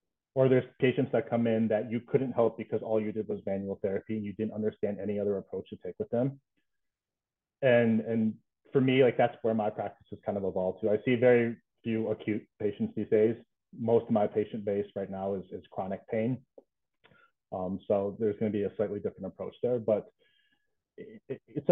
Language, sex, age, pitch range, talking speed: English, male, 30-49, 105-135 Hz, 205 wpm